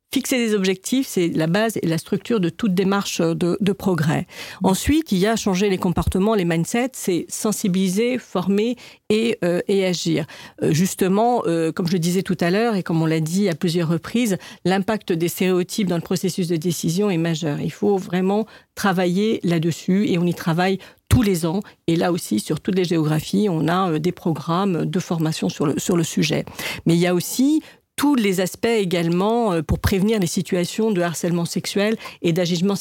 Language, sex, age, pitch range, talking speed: French, female, 50-69, 170-210 Hz, 195 wpm